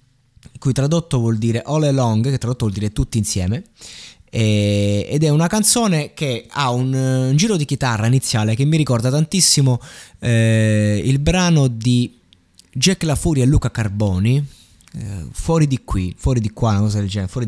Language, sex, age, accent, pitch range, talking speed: Italian, male, 20-39, native, 110-140 Hz, 170 wpm